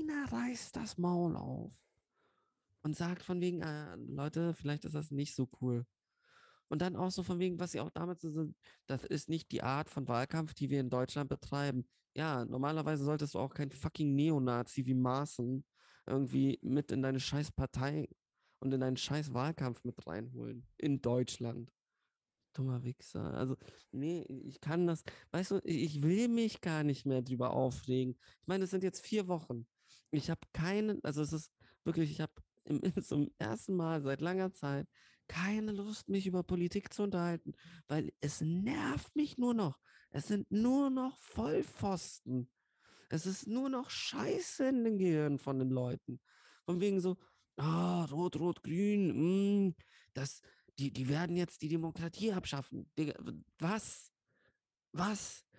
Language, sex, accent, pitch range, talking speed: German, male, German, 135-180 Hz, 160 wpm